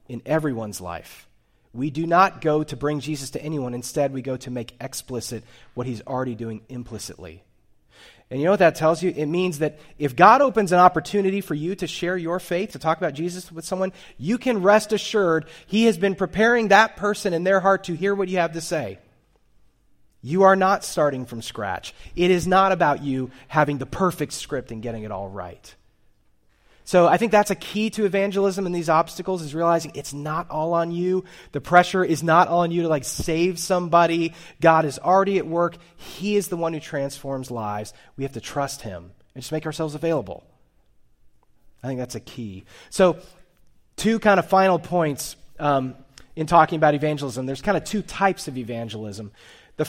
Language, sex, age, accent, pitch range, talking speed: English, male, 30-49, American, 130-185 Hz, 195 wpm